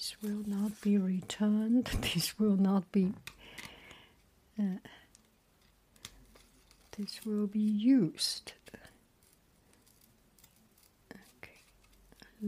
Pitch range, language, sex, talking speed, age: 190-220 Hz, English, female, 70 wpm, 60-79